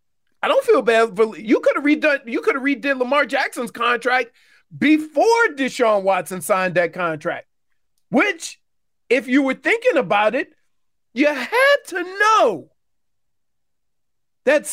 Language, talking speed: English, 130 wpm